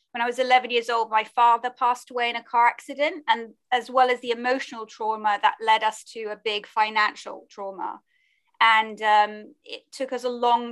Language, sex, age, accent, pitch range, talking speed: English, female, 20-39, British, 220-260 Hz, 200 wpm